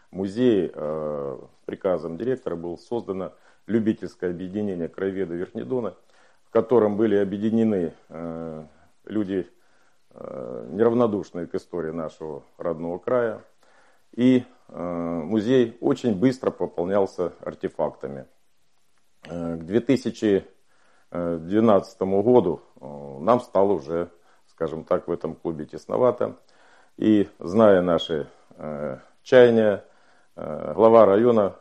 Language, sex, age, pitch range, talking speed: Russian, male, 50-69, 80-110 Hz, 85 wpm